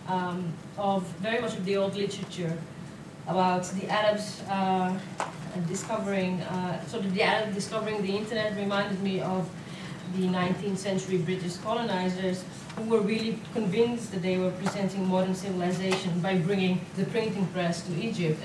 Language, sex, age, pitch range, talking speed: English, female, 30-49, 175-215 Hz, 155 wpm